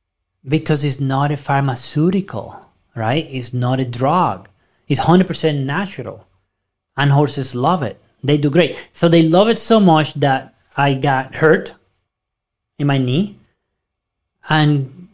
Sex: male